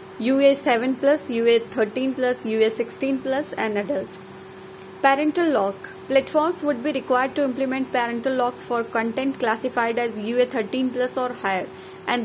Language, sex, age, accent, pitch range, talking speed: English, female, 30-49, Indian, 230-280 Hz, 115 wpm